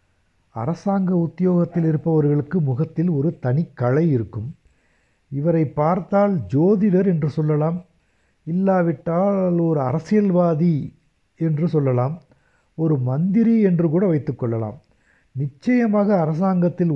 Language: Tamil